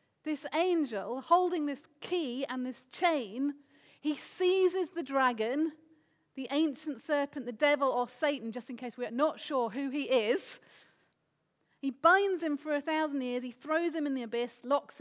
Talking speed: 170 wpm